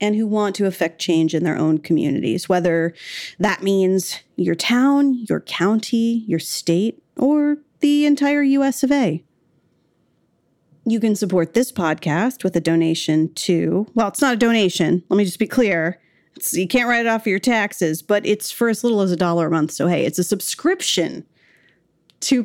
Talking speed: 185 wpm